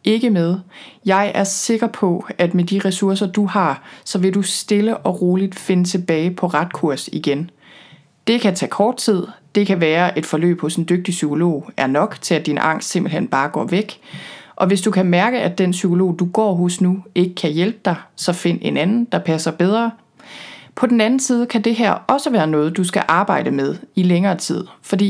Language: Danish